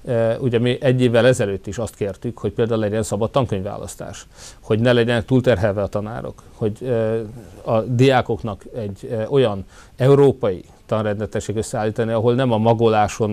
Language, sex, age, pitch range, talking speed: Hungarian, male, 40-59, 100-120 Hz, 145 wpm